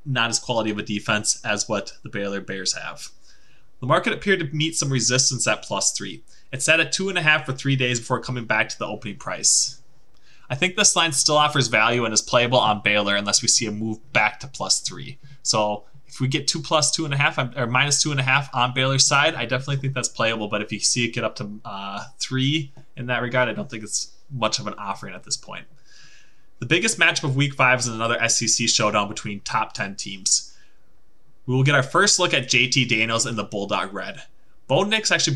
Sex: male